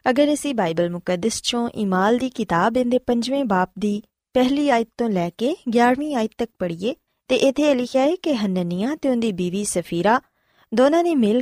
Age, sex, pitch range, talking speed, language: 20-39, female, 195-270 Hz, 185 wpm, Punjabi